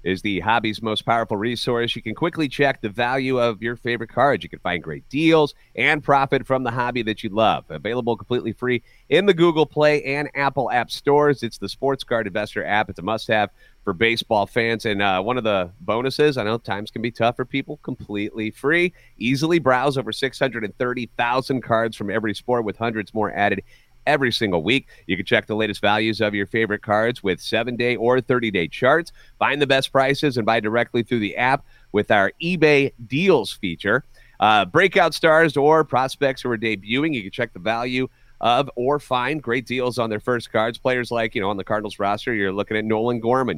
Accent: American